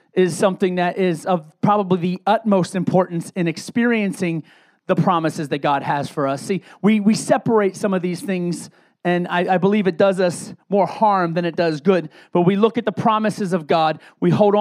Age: 30-49